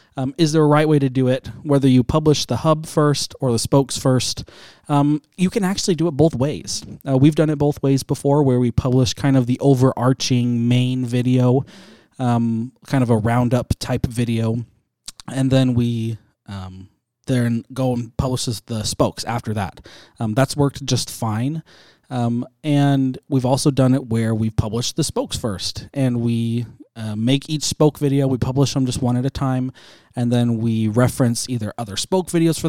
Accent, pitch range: American, 115-140 Hz